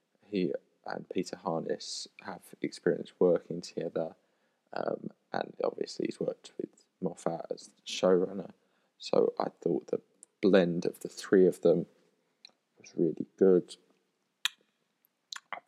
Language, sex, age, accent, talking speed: English, male, 20-39, British, 125 wpm